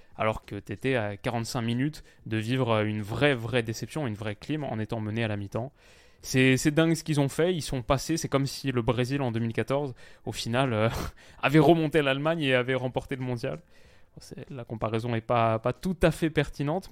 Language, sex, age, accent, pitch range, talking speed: French, male, 20-39, French, 110-140 Hz, 215 wpm